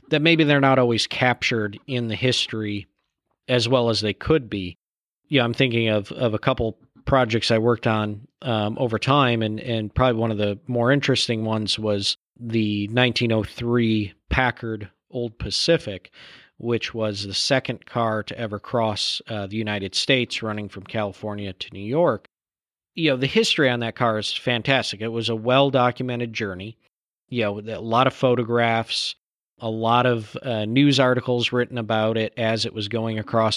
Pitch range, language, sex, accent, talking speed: 110-130 Hz, English, male, American, 175 wpm